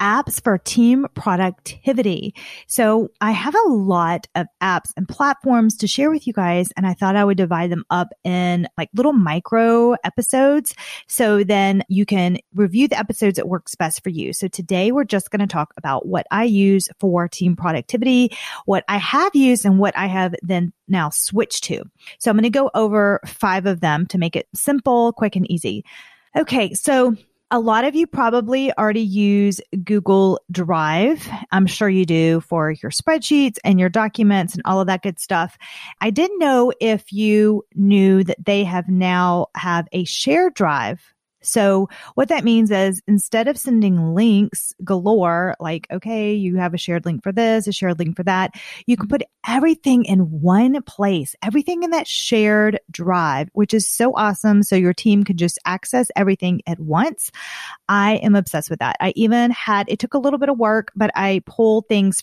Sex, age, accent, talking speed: female, 30-49, American, 185 wpm